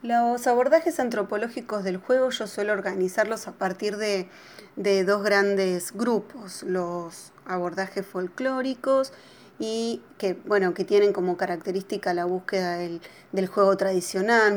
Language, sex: Spanish, female